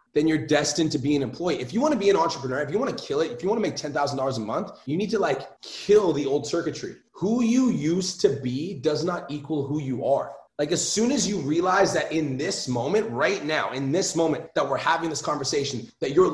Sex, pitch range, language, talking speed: male, 145-195 Hz, English, 255 wpm